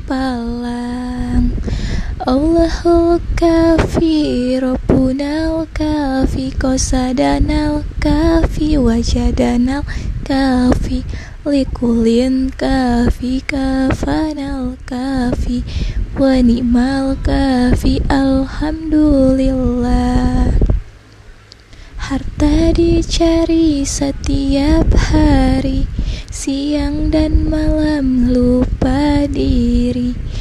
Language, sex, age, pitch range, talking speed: Indonesian, female, 20-39, 235-290 Hz, 55 wpm